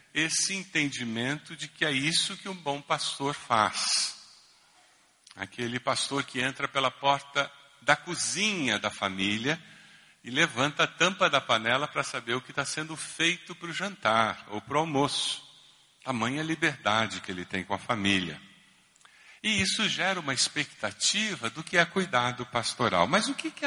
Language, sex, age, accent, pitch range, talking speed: Portuguese, male, 50-69, Brazilian, 115-165 Hz, 160 wpm